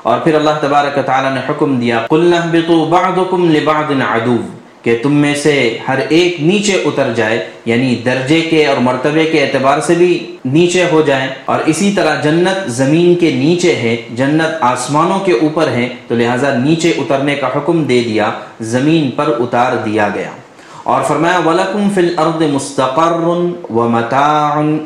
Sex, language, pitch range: male, Urdu, 125-165 Hz